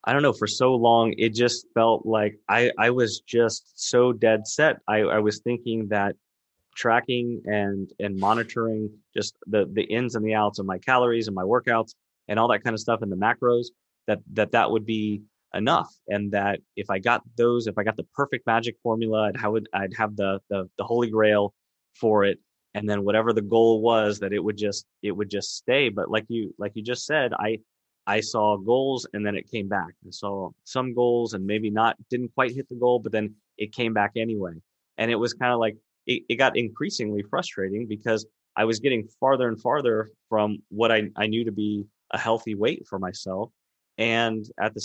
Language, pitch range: English, 105-115 Hz